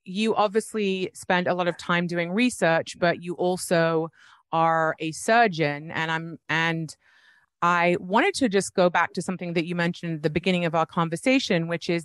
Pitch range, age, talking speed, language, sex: 160-185 Hz, 30-49, 185 wpm, English, female